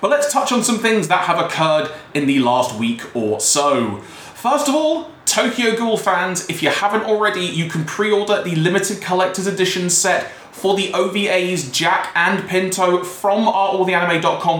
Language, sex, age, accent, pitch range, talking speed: English, male, 20-39, British, 155-200 Hz, 175 wpm